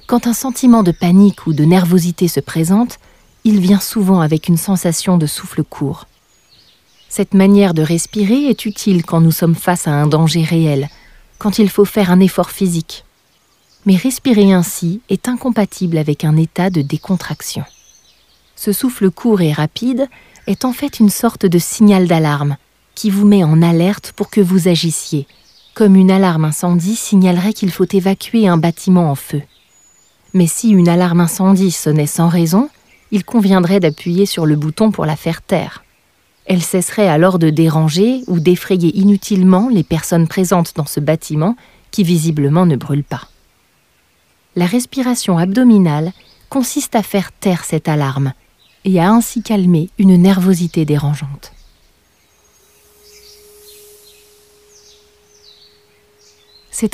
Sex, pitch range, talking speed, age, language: female, 165-210 Hz, 145 wpm, 40-59, English